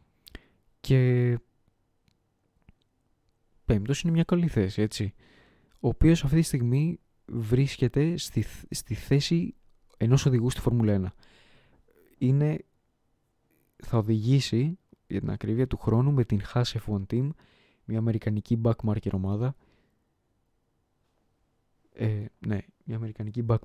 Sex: male